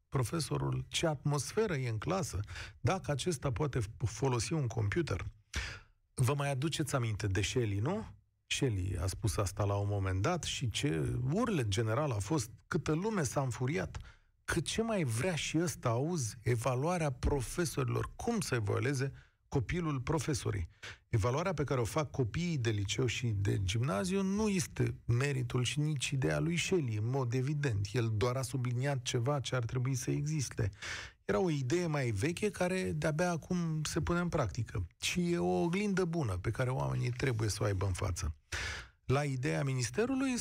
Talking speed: 165 wpm